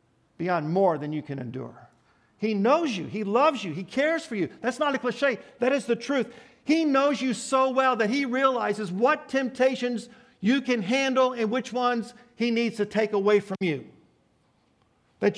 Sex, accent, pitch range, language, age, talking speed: male, American, 180-240 Hz, English, 50-69, 185 wpm